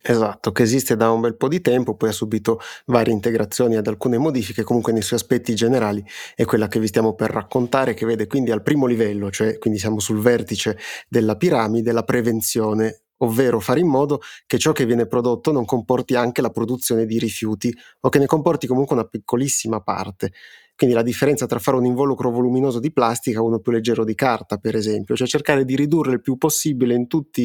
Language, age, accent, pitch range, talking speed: Italian, 30-49, native, 110-130 Hz, 210 wpm